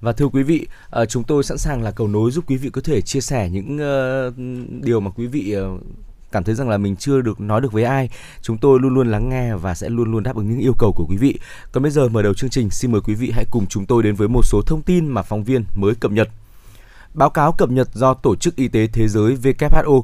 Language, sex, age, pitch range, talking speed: Vietnamese, male, 20-39, 110-135 Hz, 275 wpm